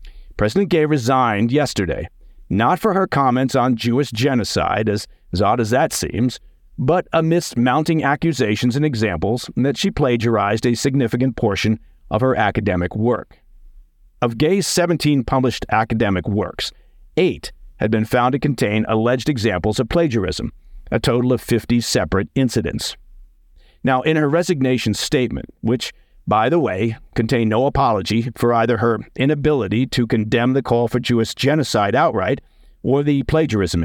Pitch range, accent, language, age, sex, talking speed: 110-140 Hz, American, English, 50-69, male, 145 wpm